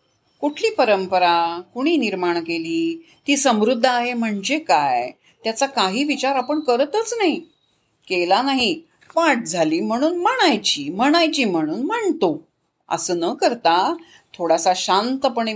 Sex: female